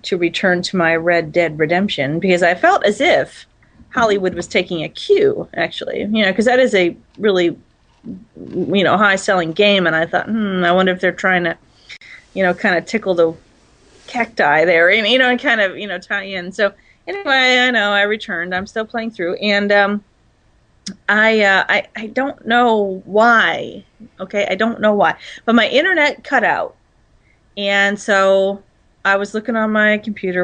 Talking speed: 185 wpm